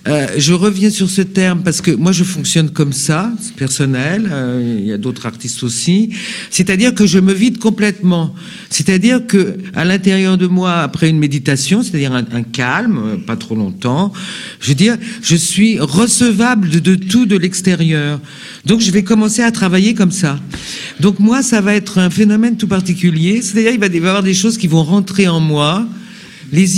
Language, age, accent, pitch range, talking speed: French, 50-69, French, 150-200 Hz, 195 wpm